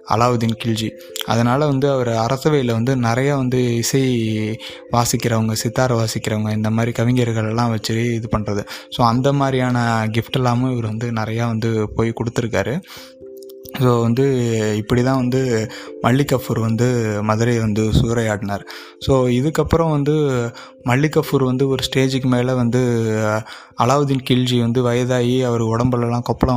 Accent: native